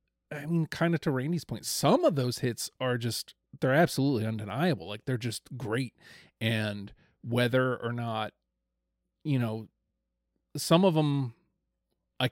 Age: 30-49